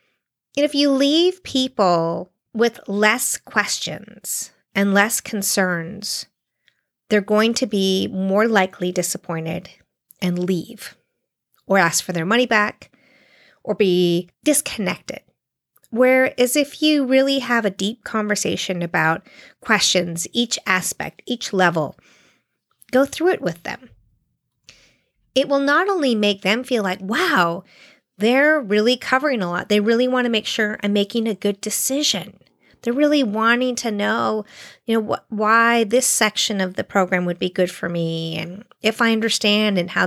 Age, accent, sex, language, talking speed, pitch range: 30-49, American, female, English, 145 wpm, 185-245 Hz